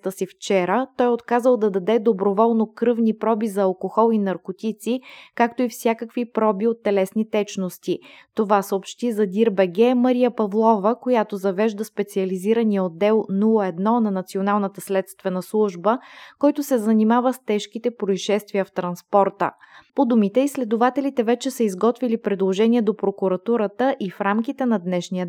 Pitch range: 195-235 Hz